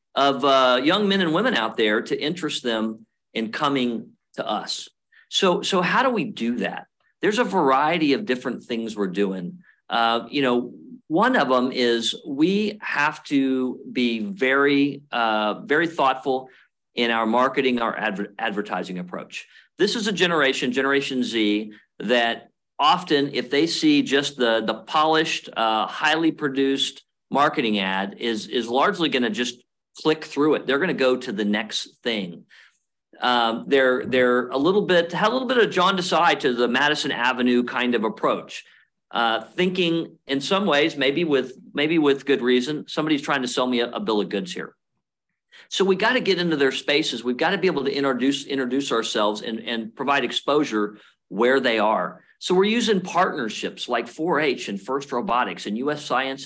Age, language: 50-69, English